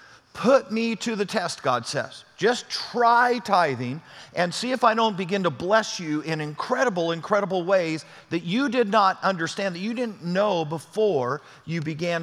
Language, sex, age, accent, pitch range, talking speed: English, male, 50-69, American, 165-210 Hz, 170 wpm